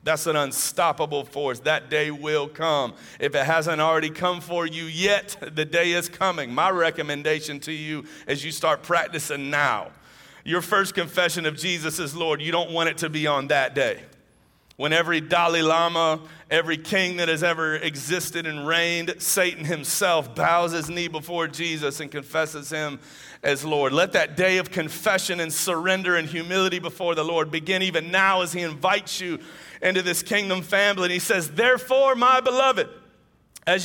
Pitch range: 150-180 Hz